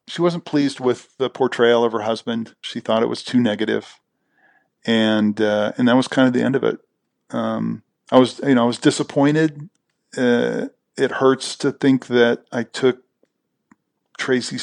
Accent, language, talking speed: American, English, 175 wpm